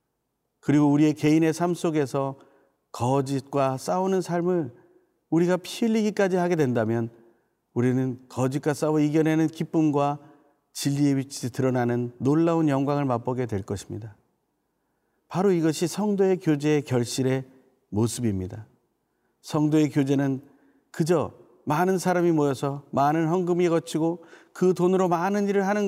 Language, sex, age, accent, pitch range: Korean, male, 40-59, native, 140-185 Hz